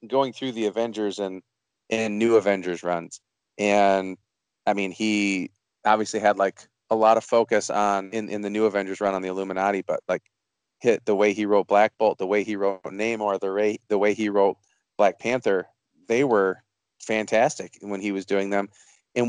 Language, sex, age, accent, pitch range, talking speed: English, male, 30-49, American, 100-115 Hz, 185 wpm